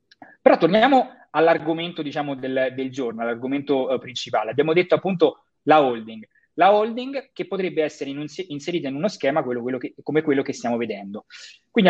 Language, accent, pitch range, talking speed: Italian, native, 130-185 Hz, 175 wpm